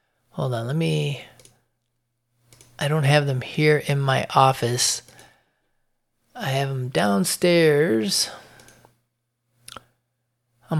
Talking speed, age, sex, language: 95 wpm, 30-49, male, English